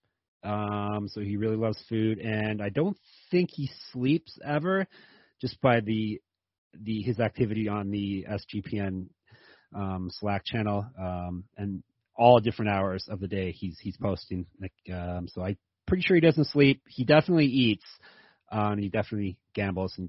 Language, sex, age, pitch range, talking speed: English, male, 30-49, 100-135 Hz, 160 wpm